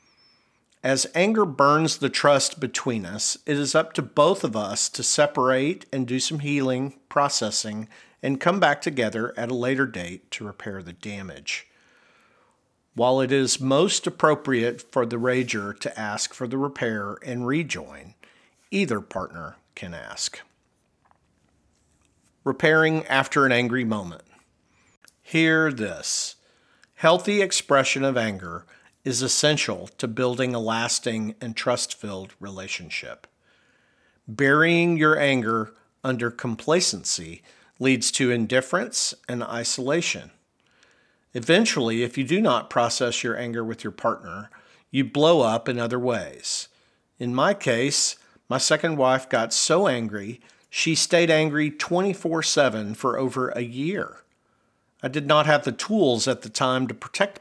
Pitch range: 115-145 Hz